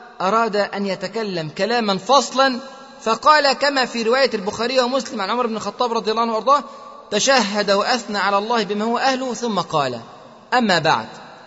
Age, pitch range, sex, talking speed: 30-49, 195-255 Hz, male, 150 wpm